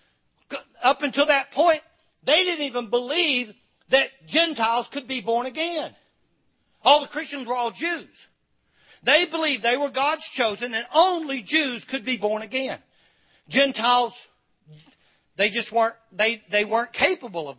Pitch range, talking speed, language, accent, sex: 215-290 Hz, 145 wpm, English, American, male